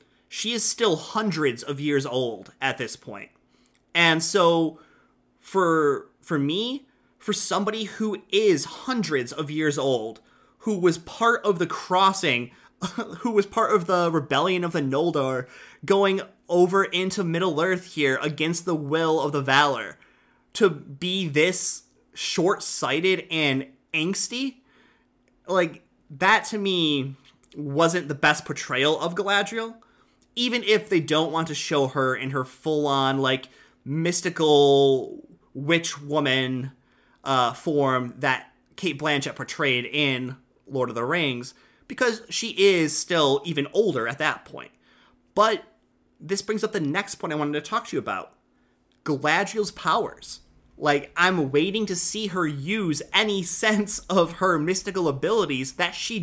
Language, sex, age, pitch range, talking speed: English, male, 30-49, 145-195 Hz, 140 wpm